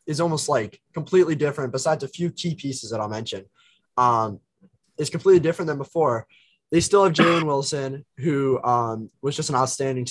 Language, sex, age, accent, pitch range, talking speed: English, male, 20-39, American, 115-150 Hz, 180 wpm